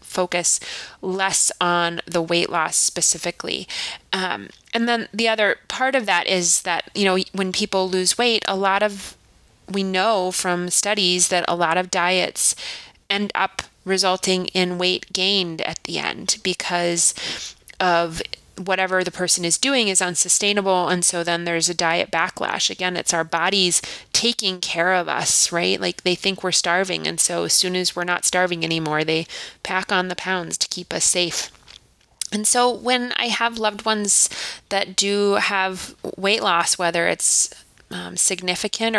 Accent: American